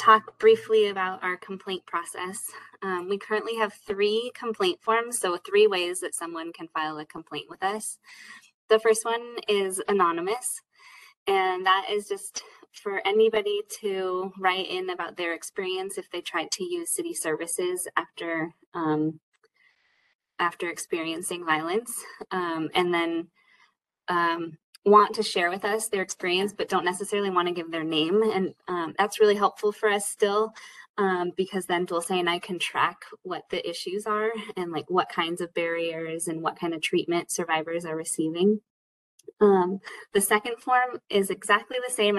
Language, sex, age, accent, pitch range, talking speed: English, female, 20-39, American, 180-235 Hz, 160 wpm